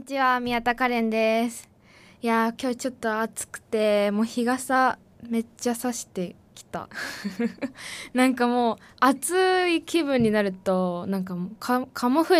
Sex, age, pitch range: female, 20-39, 200-270 Hz